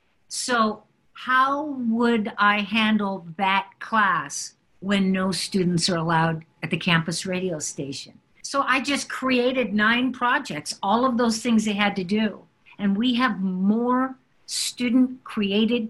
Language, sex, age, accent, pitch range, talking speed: English, female, 50-69, American, 180-220 Hz, 135 wpm